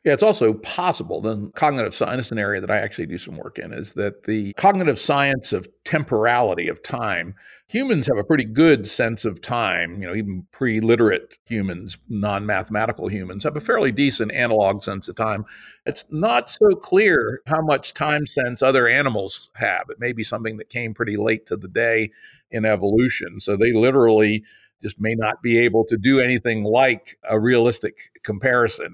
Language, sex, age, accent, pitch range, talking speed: English, male, 50-69, American, 110-135 Hz, 180 wpm